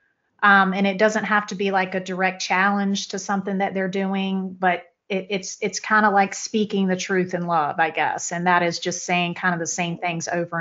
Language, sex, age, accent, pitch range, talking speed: English, female, 30-49, American, 175-195 Hz, 230 wpm